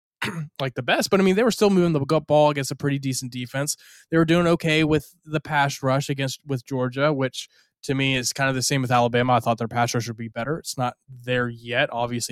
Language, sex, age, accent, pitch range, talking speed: English, male, 20-39, American, 125-155 Hz, 250 wpm